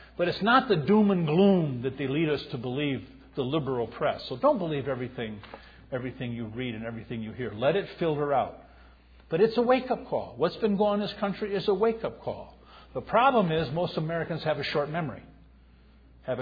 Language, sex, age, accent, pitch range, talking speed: English, male, 50-69, American, 130-195 Hz, 210 wpm